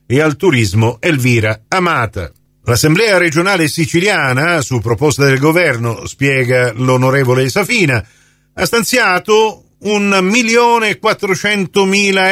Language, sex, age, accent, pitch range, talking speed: Italian, male, 50-69, native, 130-195 Hz, 100 wpm